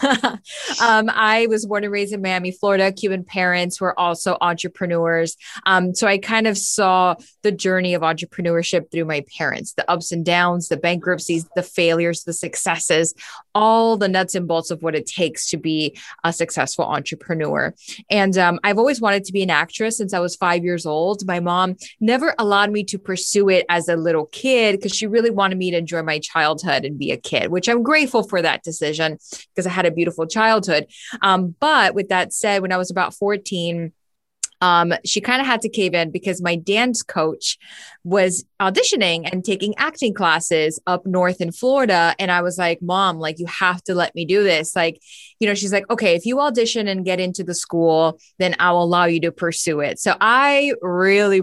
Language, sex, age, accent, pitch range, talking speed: English, female, 20-39, American, 170-210 Hz, 200 wpm